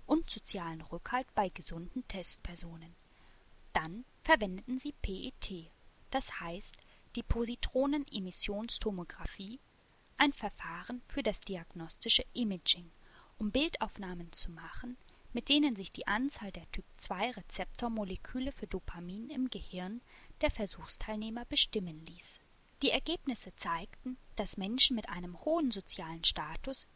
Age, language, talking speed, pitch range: 10-29, German, 105 wpm, 180-255 Hz